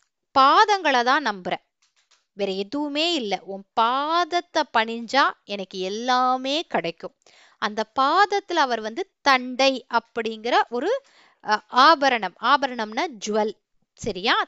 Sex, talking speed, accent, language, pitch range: female, 90 wpm, native, Tamil, 205-315 Hz